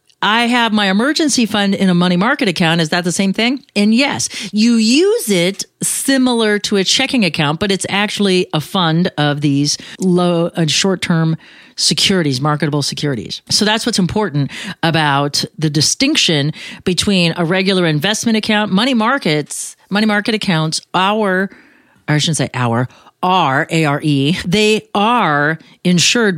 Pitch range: 160-215 Hz